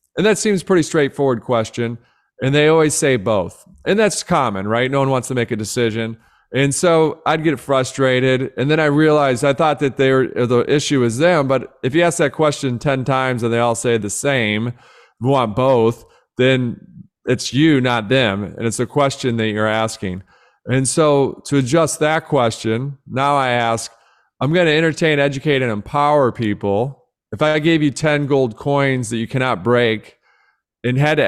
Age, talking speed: 40-59, 190 wpm